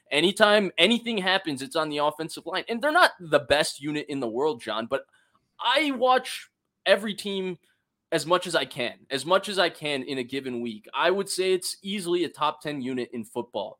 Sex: male